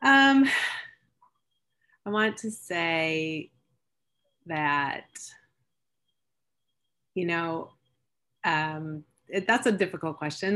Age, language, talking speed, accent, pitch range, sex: 30-49, English, 80 wpm, American, 150-175 Hz, female